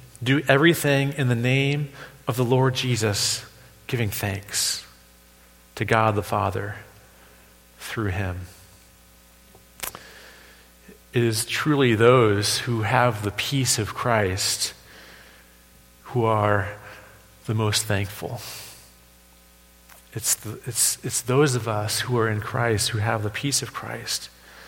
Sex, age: male, 40-59